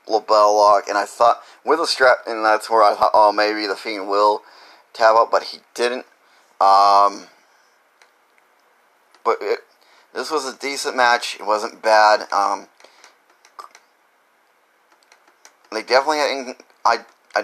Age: 30-49